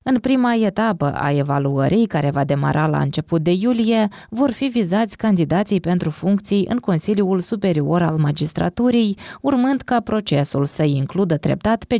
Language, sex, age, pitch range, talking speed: Romanian, female, 20-39, 150-225 Hz, 150 wpm